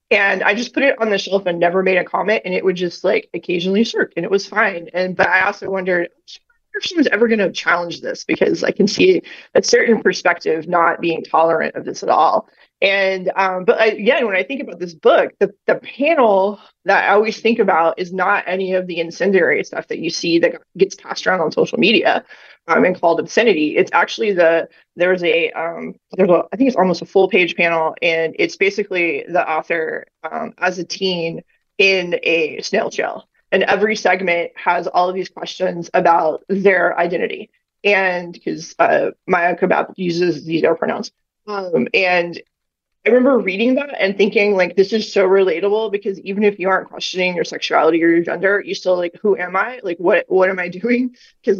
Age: 20-39